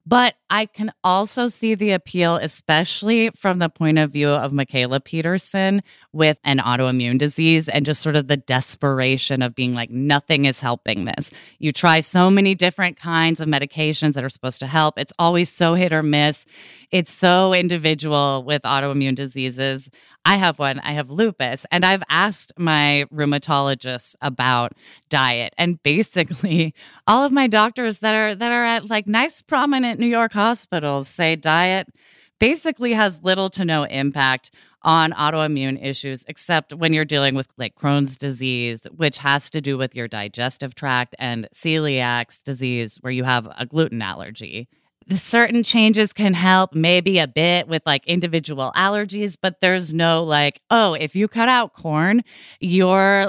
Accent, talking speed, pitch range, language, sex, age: American, 165 wpm, 135-190 Hz, English, female, 20-39